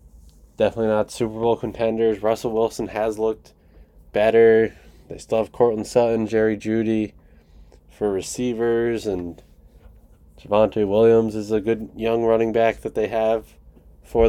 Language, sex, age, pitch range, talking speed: English, male, 20-39, 95-115 Hz, 135 wpm